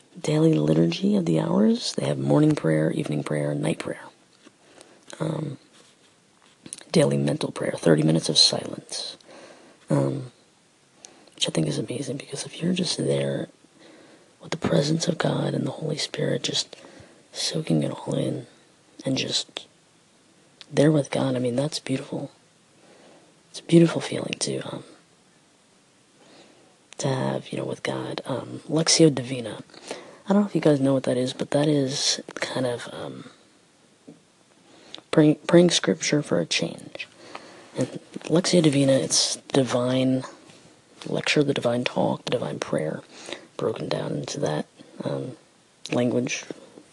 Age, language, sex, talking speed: 30-49, English, female, 140 wpm